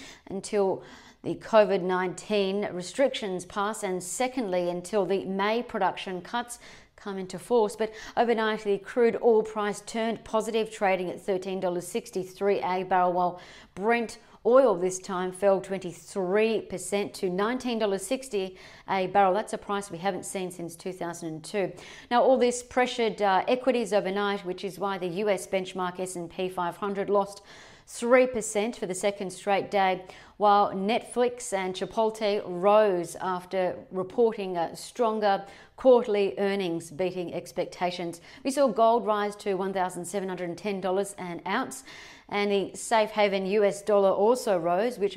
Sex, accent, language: female, Australian, English